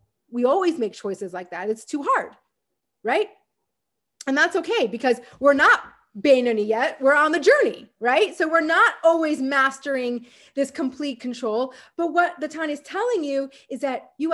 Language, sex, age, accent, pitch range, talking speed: English, female, 30-49, American, 245-320 Hz, 170 wpm